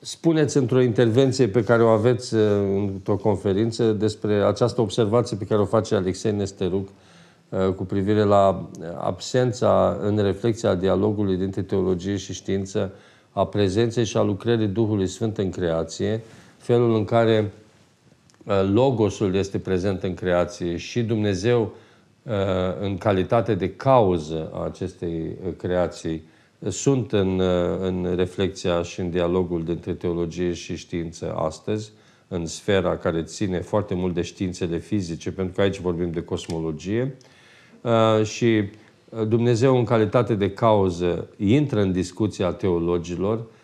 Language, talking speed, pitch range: Romanian, 125 wpm, 90-110 Hz